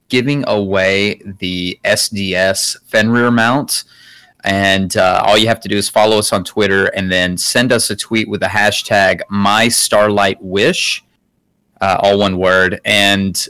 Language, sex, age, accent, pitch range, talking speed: English, male, 30-49, American, 100-125 Hz, 145 wpm